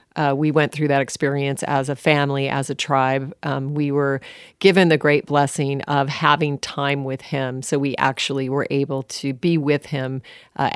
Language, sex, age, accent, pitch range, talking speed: English, female, 40-59, American, 140-165 Hz, 190 wpm